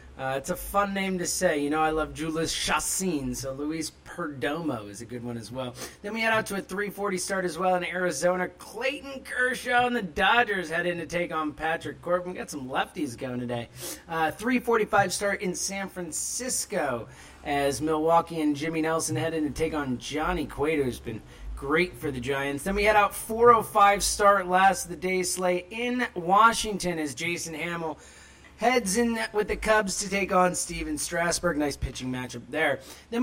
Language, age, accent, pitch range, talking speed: English, 30-49, American, 145-200 Hz, 195 wpm